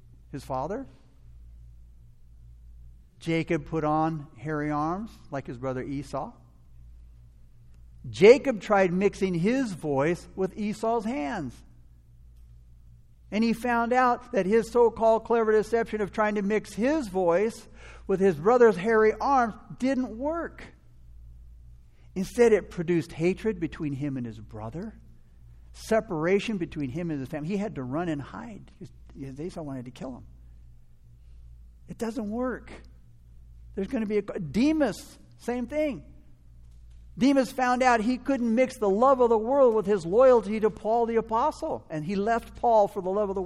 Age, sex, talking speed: 60-79, male, 145 wpm